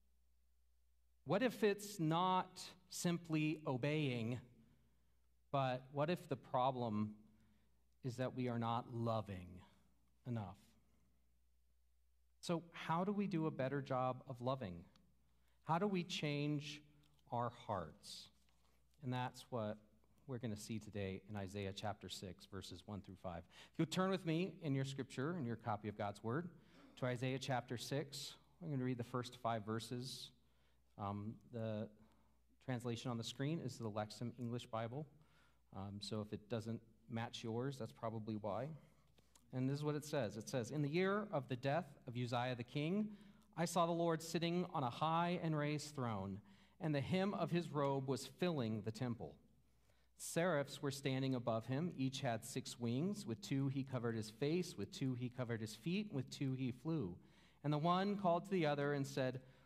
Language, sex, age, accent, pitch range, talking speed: English, male, 40-59, American, 110-150 Hz, 170 wpm